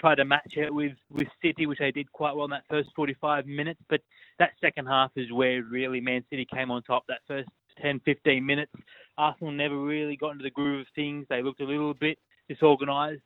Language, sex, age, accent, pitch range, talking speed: English, male, 20-39, Australian, 130-145 Hz, 220 wpm